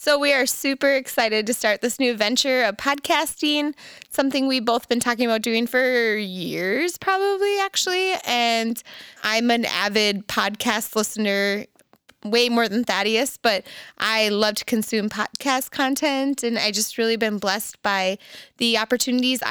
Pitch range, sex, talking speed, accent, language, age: 210-255 Hz, female, 150 wpm, American, English, 20-39